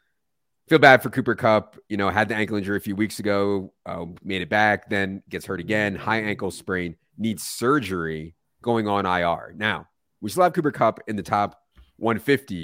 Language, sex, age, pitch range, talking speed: English, male, 30-49, 90-115 Hz, 195 wpm